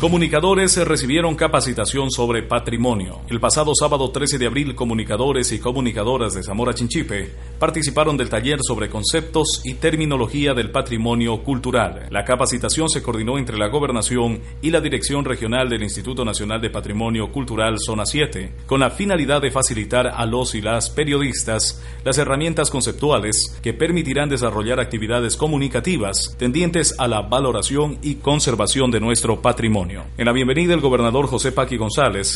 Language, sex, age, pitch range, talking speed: Spanish, male, 40-59, 110-140 Hz, 150 wpm